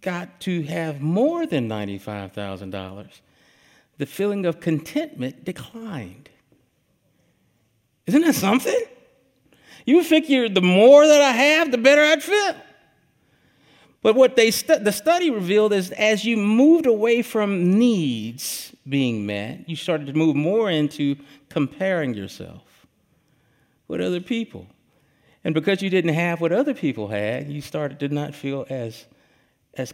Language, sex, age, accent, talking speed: English, male, 50-69, American, 135 wpm